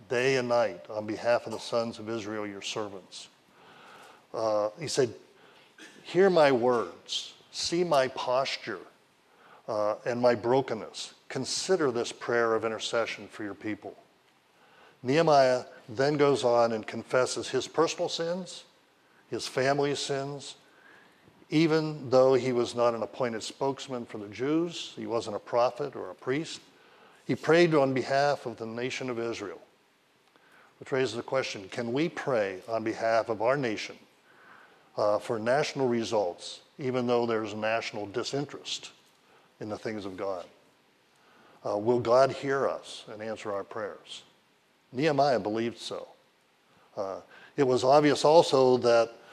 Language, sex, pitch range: English, male, 115-140 Hz